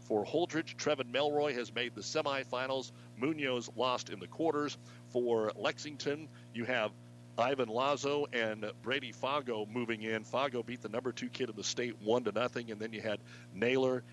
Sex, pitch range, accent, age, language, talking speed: male, 115-140 Hz, American, 50-69, English, 175 wpm